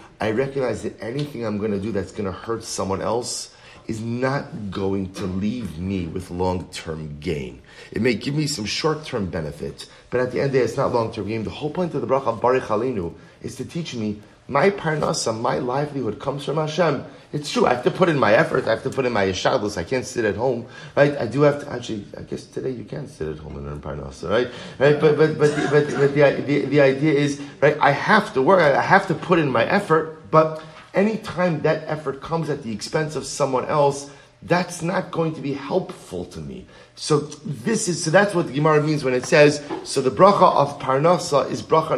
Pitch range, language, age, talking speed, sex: 115-155 Hz, English, 30-49, 230 wpm, male